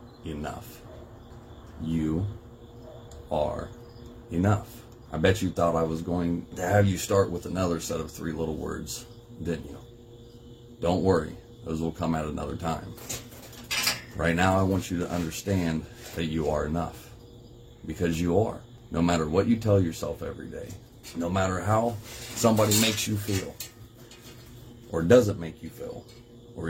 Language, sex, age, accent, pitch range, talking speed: English, male, 30-49, American, 85-115 Hz, 150 wpm